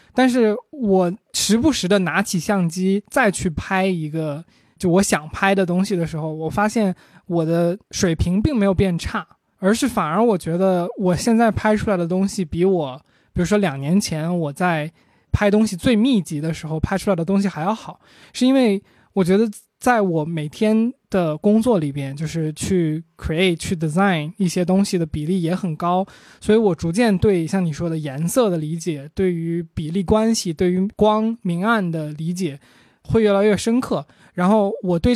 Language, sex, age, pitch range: Chinese, male, 20-39, 165-210 Hz